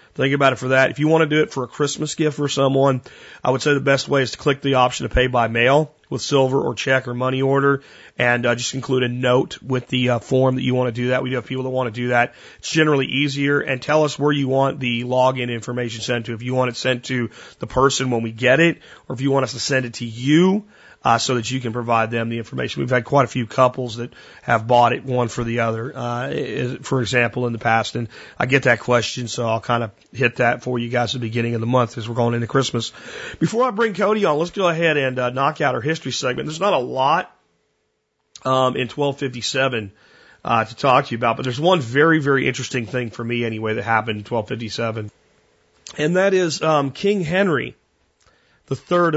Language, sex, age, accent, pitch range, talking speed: English, male, 30-49, American, 120-140 Hz, 250 wpm